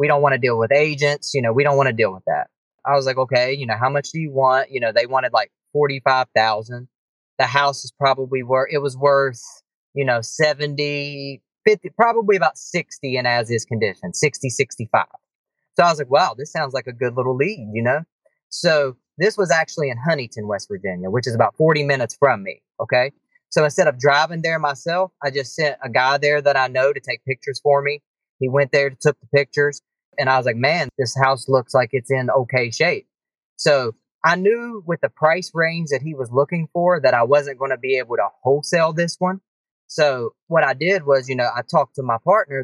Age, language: 30-49, English